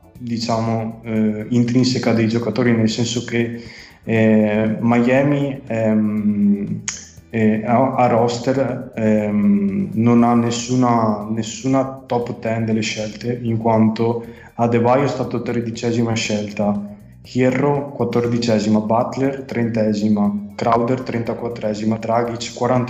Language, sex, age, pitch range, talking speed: Italian, male, 20-39, 110-120 Hz, 100 wpm